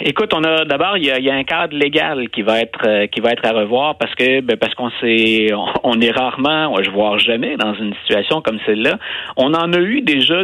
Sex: male